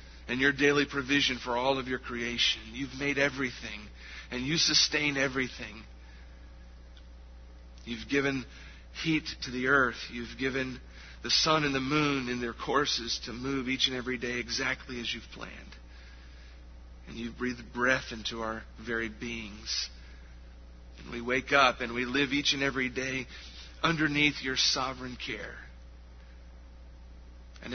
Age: 40-59